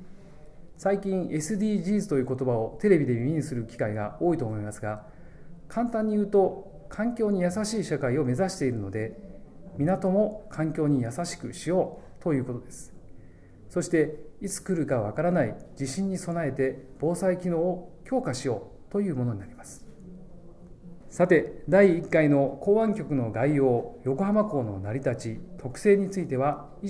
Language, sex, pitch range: Japanese, male, 125-185 Hz